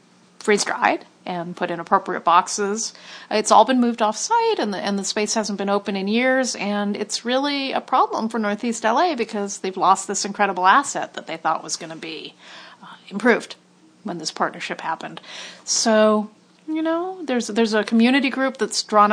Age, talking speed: 40-59, 180 wpm